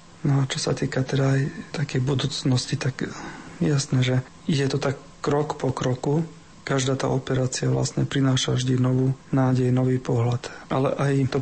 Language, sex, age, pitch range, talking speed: Slovak, male, 40-59, 130-145 Hz, 165 wpm